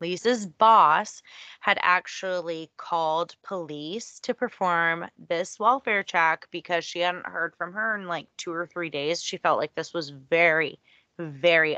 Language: English